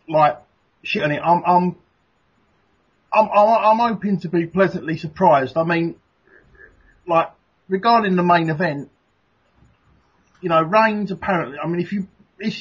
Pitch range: 140-170 Hz